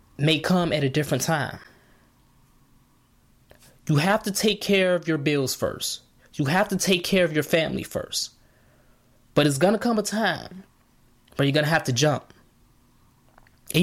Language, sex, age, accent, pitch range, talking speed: English, male, 20-39, American, 135-195 Hz, 170 wpm